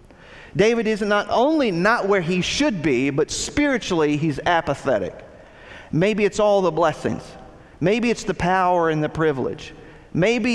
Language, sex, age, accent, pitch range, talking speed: English, male, 50-69, American, 155-210 Hz, 150 wpm